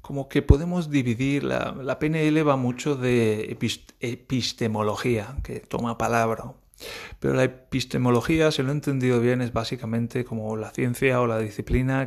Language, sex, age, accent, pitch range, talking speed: Spanish, male, 30-49, Spanish, 110-130 Hz, 150 wpm